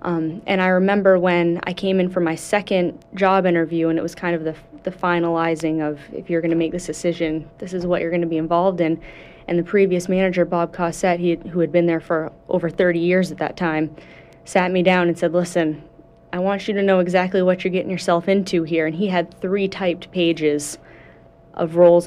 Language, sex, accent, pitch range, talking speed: English, female, American, 165-185 Hz, 220 wpm